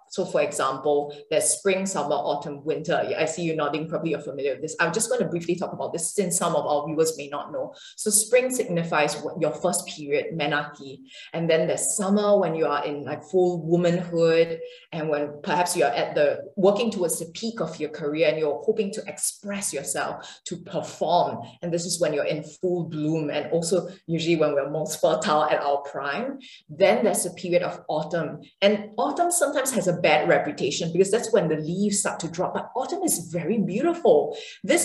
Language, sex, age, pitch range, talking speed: English, female, 20-39, 155-205 Hz, 205 wpm